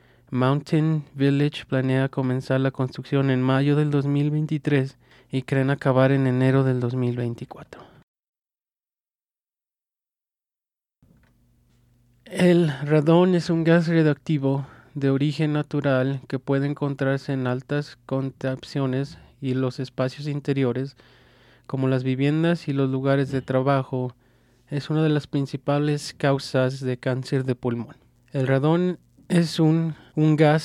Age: 30-49